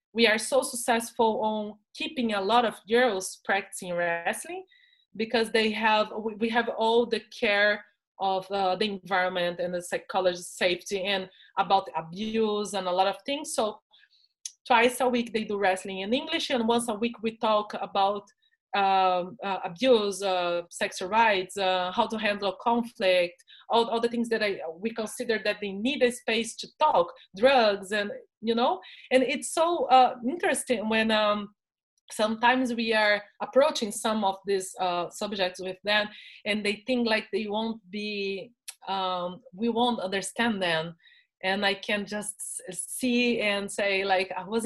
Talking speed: 165 wpm